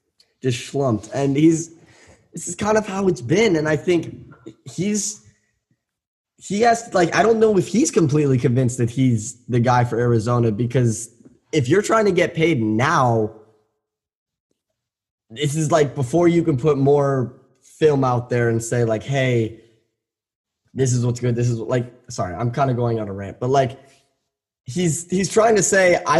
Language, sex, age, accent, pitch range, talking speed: English, male, 10-29, American, 120-155 Hz, 180 wpm